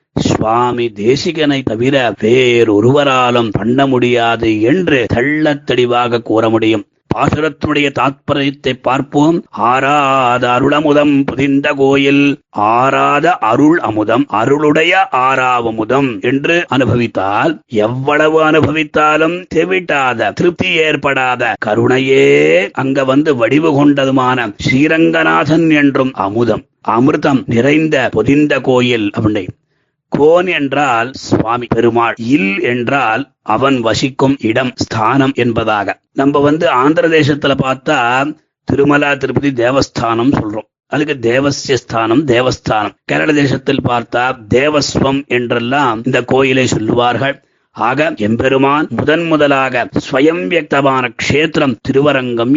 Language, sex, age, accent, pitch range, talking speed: Tamil, male, 30-49, native, 120-145 Hz, 90 wpm